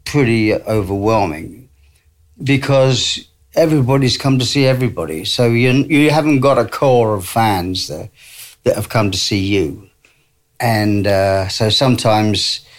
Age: 50-69